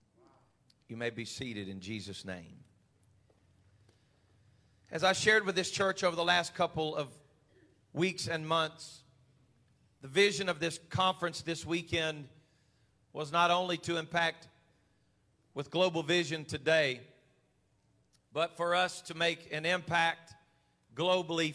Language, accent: English, American